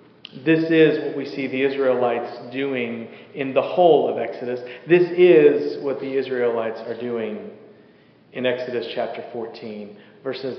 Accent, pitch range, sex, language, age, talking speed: American, 125-165 Hz, male, English, 40-59, 140 wpm